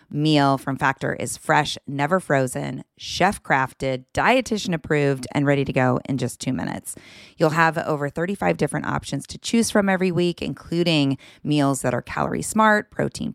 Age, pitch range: 30-49, 135-180 Hz